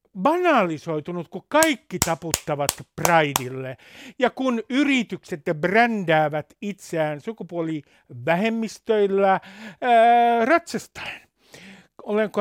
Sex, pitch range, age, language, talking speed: male, 165-230 Hz, 60-79, Finnish, 70 wpm